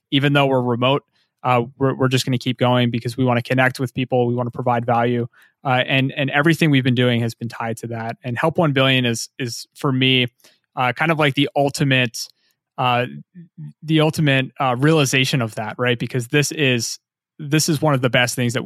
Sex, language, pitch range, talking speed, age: male, English, 125-140 Hz, 220 wpm, 20-39